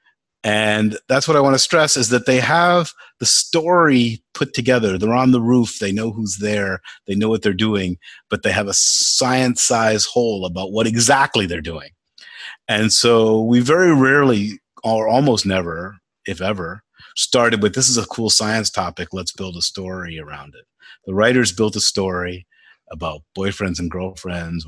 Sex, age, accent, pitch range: male, 40-59, American, 90-125 Hz